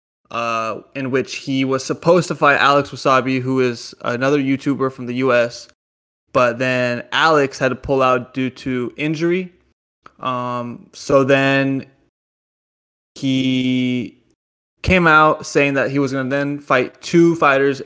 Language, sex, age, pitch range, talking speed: English, male, 20-39, 125-145 Hz, 145 wpm